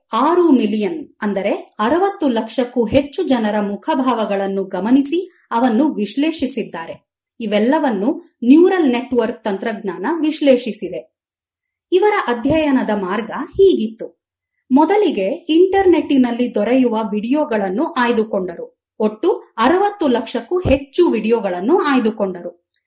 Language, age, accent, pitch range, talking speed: Kannada, 30-49, native, 220-310 Hz, 80 wpm